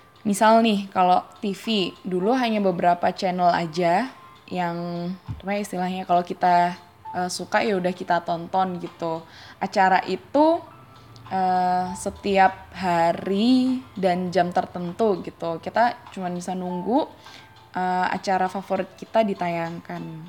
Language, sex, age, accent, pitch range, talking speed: Indonesian, female, 10-29, native, 180-220 Hz, 110 wpm